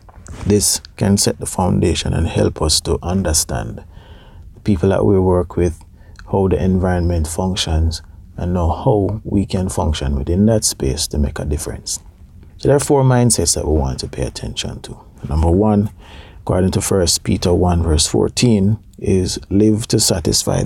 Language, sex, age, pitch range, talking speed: English, male, 30-49, 85-105 Hz, 170 wpm